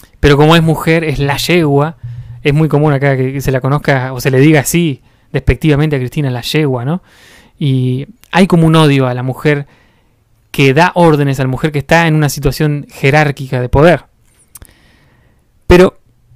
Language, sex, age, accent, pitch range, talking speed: Spanish, male, 20-39, Argentinian, 135-165 Hz, 180 wpm